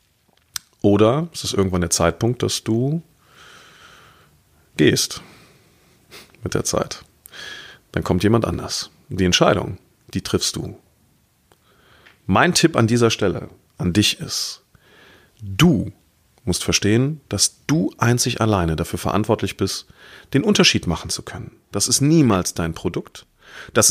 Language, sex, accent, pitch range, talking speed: German, male, German, 90-120 Hz, 125 wpm